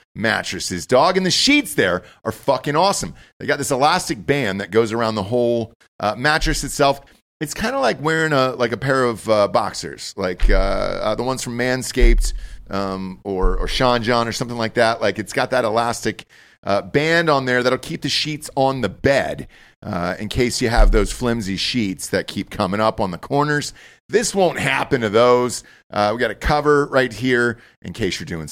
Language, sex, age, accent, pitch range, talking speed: English, male, 40-59, American, 110-145 Hz, 205 wpm